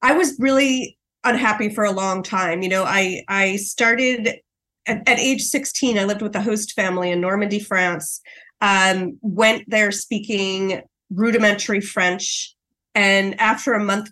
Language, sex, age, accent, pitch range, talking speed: English, female, 30-49, American, 185-225 Hz, 155 wpm